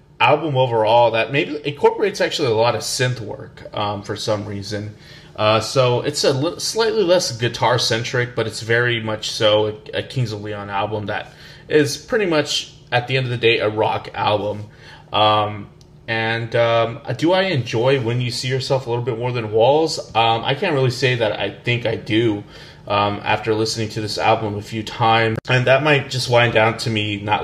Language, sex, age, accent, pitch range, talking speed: English, male, 20-39, American, 105-130 Hz, 200 wpm